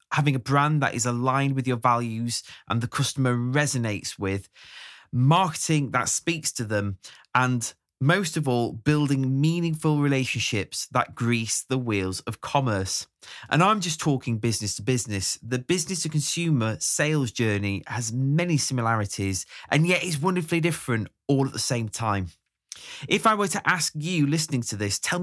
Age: 20-39